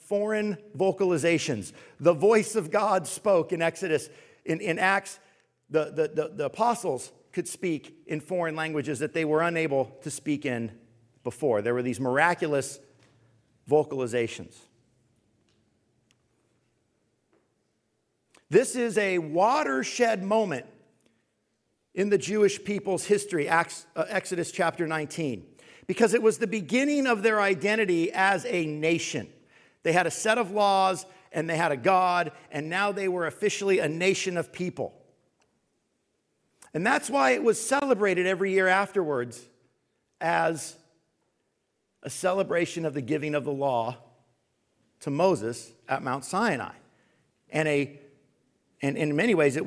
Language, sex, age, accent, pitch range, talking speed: English, male, 50-69, American, 140-190 Hz, 130 wpm